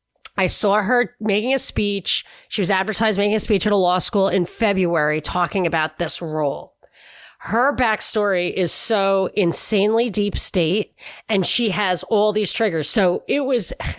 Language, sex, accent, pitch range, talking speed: English, female, American, 170-215 Hz, 165 wpm